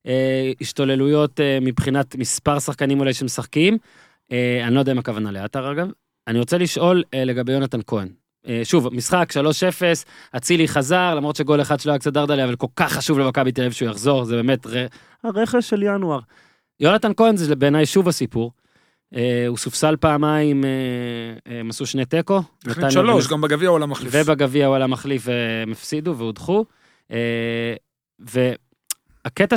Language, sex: Hebrew, male